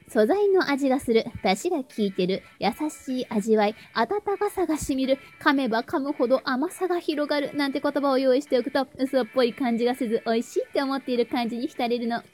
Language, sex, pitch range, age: Japanese, female, 245-345 Hz, 20-39